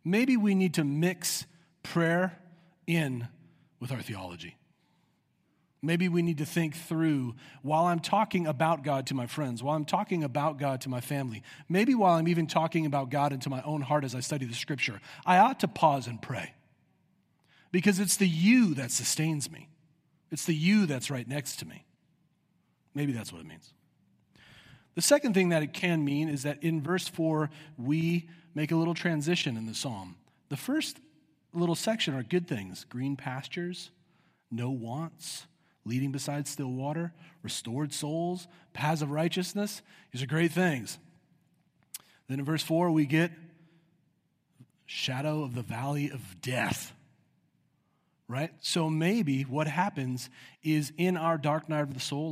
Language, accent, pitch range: English, American, 135-170 Hz